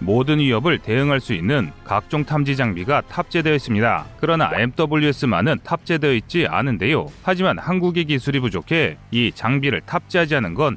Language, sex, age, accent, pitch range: Korean, male, 30-49, native, 125-160 Hz